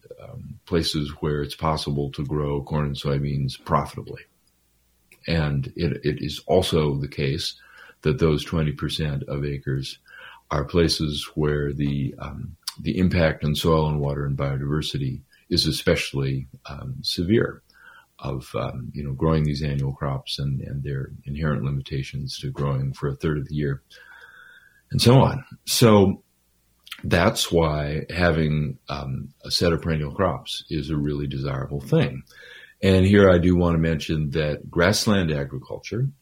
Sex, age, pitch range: male, 40-59, 70-85 Hz